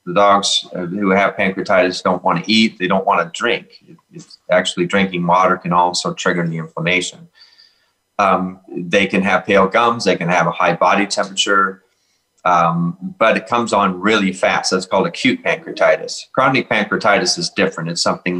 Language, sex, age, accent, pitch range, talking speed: English, male, 30-49, American, 90-105 Hz, 175 wpm